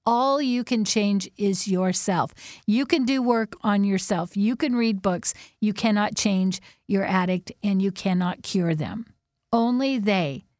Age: 50-69